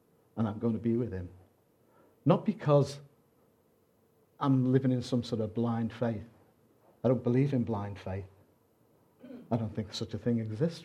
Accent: British